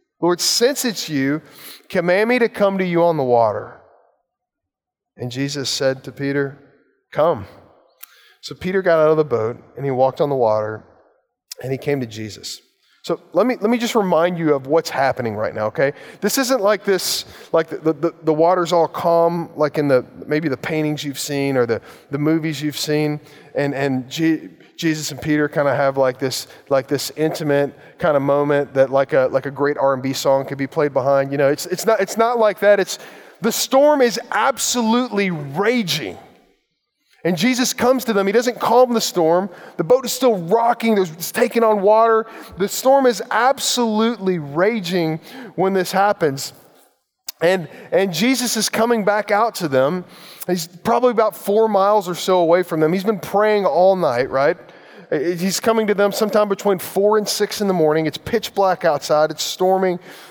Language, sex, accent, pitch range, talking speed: English, male, American, 145-215 Hz, 190 wpm